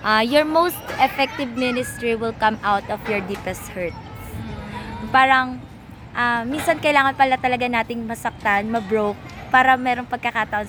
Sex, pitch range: female, 210-265 Hz